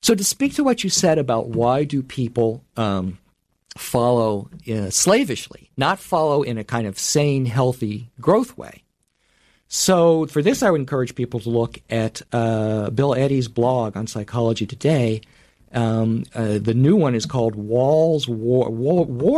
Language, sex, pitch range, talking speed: English, male, 115-175 Hz, 160 wpm